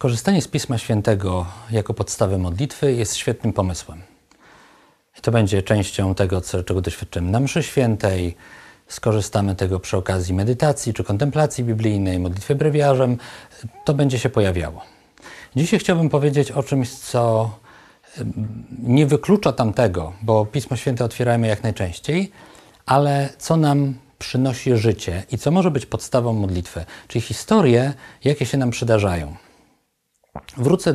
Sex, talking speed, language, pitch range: male, 130 wpm, Polish, 105-145 Hz